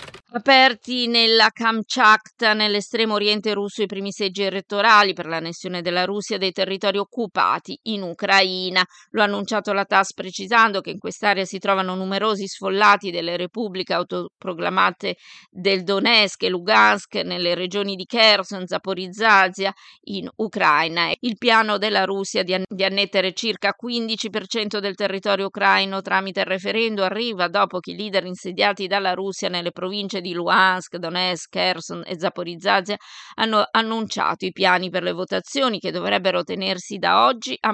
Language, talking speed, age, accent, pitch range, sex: Italian, 145 wpm, 20-39, native, 180-210 Hz, female